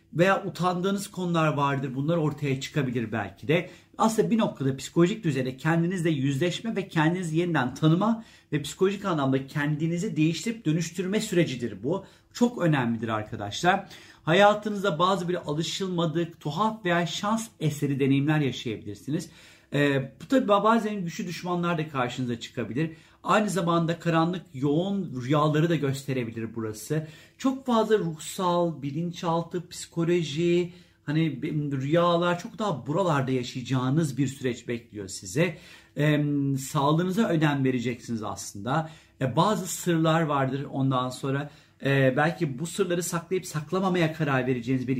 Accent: native